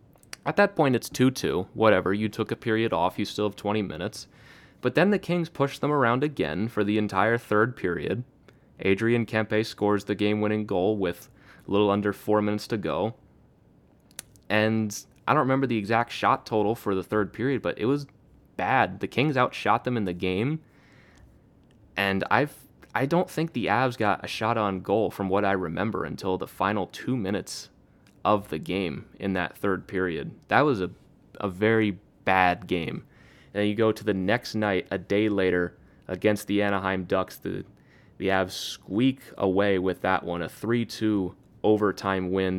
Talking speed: 180 wpm